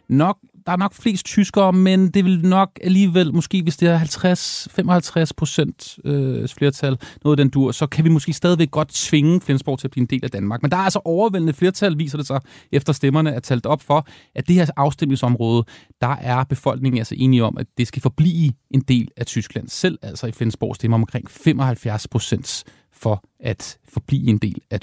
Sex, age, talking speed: male, 30-49, 205 wpm